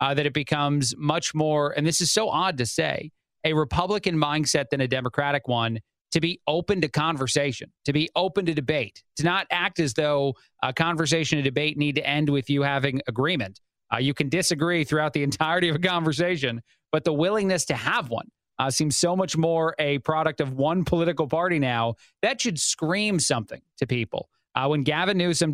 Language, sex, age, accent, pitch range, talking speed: English, male, 30-49, American, 140-165 Hz, 195 wpm